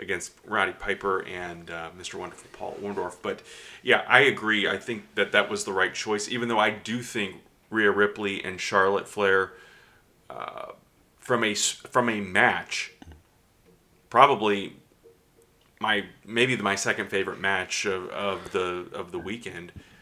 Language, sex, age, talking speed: English, male, 30-49, 150 wpm